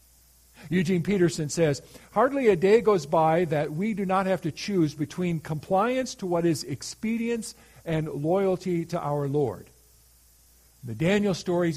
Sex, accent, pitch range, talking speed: male, American, 115-160 Hz, 150 wpm